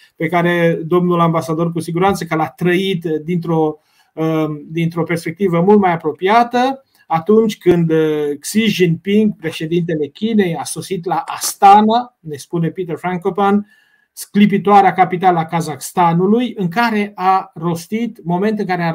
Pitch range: 165-200 Hz